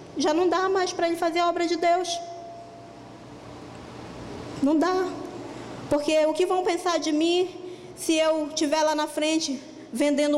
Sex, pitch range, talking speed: female, 260-320 Hz, 155 wpm